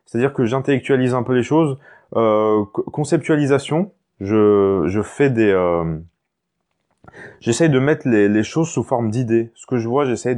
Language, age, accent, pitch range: French, 20-39, French, 110-140 Hz